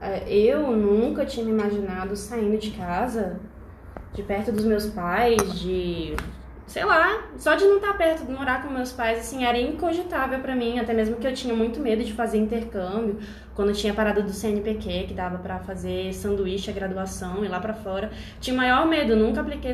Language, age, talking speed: Portuguese, 20-39, 195 wpm